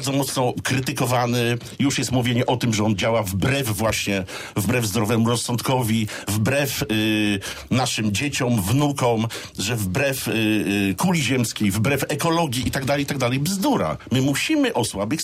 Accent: native